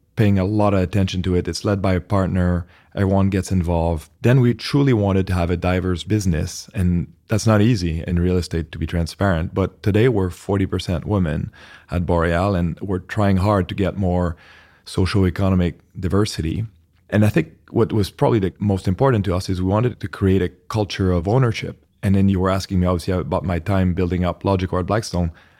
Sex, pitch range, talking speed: male, 90-100 Hz, 200 wpm